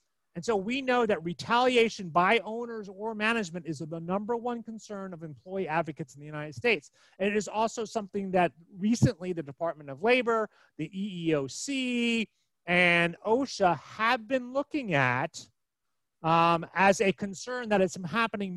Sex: male